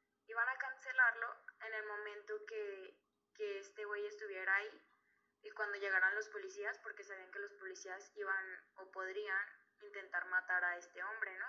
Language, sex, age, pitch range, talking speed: Spanish, female, 10-29, 195-300 Hz, 160 wpm